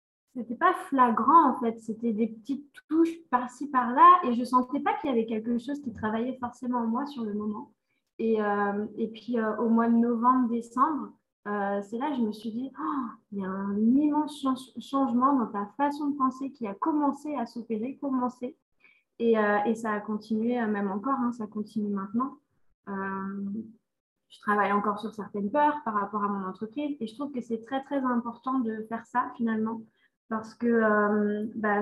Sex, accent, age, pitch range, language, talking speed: female, French, 20-39, 215-265 Hz, French, 205 wpm